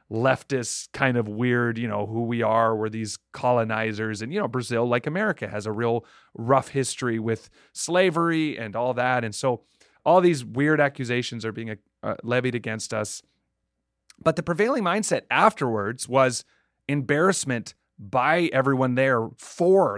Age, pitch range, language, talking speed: 30-49, 110-140 Hz, English, 155 wpm